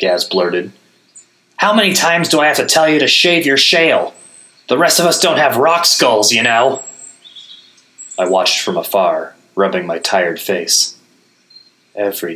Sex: male